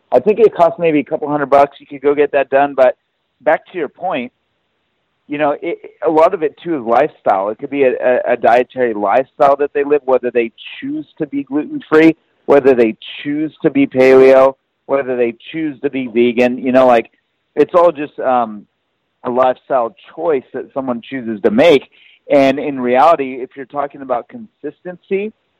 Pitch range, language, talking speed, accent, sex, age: 125-145 Hz, English, 190 wpm, American, male, 40-59